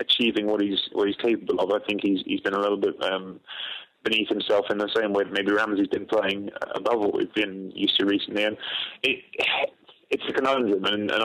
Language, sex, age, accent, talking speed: English, male, 20-39, British, 220 wpm